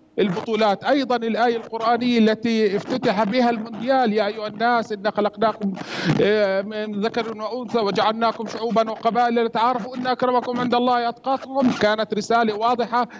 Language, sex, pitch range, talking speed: Arabic, male, 205-235 Hz, 125 wpm